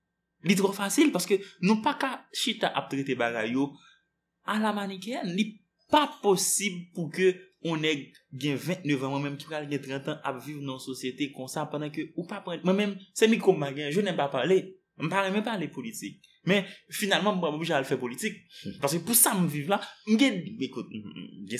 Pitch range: 140-200 Hz